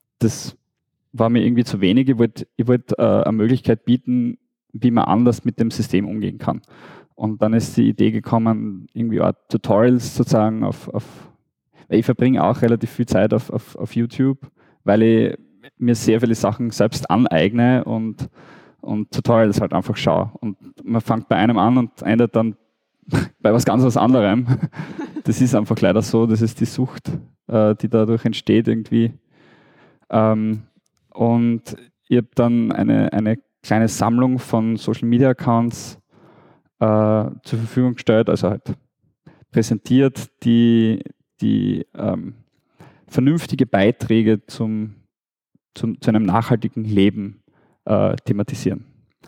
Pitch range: 110-125 Hz